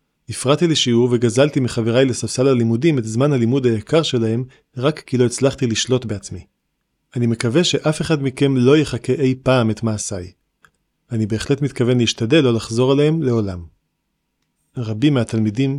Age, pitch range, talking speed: 40-59, 110-130 Hz, 145 wpm